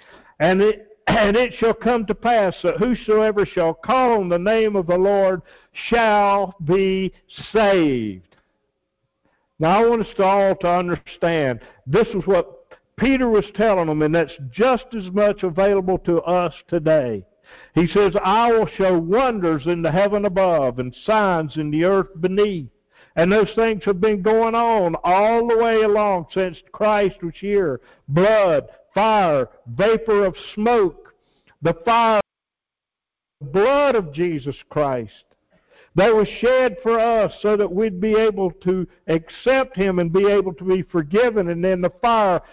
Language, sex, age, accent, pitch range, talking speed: English, male, 60-79, American, 165-220 Hz, 155 wpm